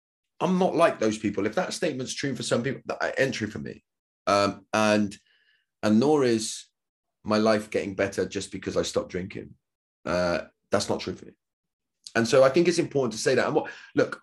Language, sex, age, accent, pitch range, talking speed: English, male, 20-39, British, 105-155 Hz, 195 wpm